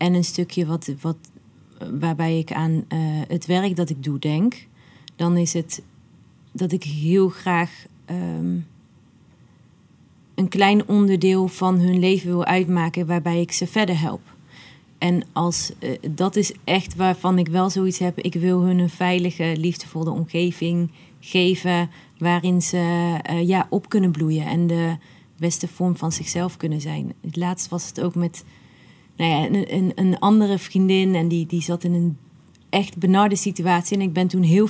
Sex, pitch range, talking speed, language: female, 165-185 Hz, 160 wpm, Dutch